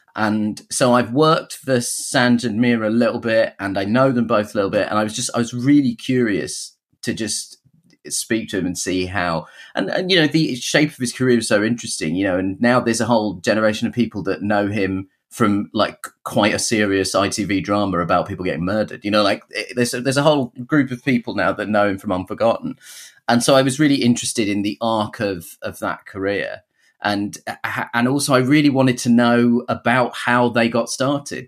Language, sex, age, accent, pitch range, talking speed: English, male, 30-49, British, 105-130 Hz, 215 wpm